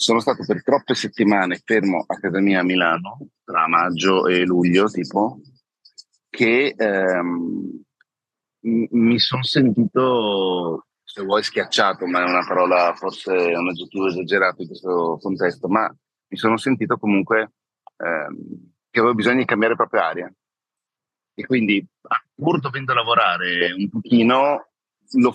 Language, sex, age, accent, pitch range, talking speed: Italian, male, 40-59, native, 95-115 Hz, 135 wpm